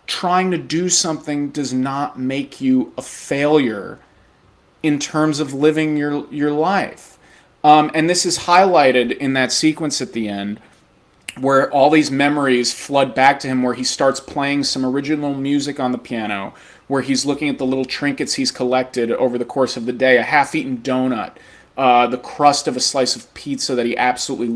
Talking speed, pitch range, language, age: 185 wpm, 130-170 Hz, English, 30-49